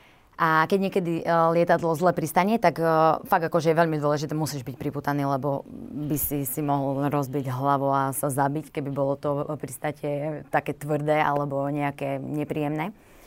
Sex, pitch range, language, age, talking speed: female, 150-170 Hz, Slovak, 20-39, 155 wpm